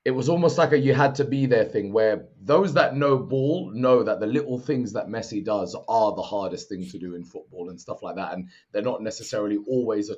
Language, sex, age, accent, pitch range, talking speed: English, male, 30-49, British, 105-150 Hz, 225 wpm